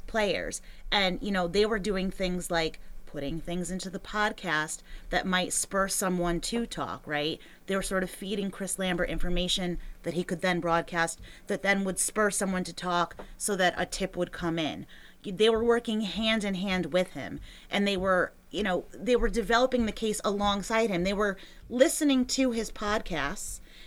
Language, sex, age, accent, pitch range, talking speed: English, female, 30-49, American, 175-215 Hz, 185 wpm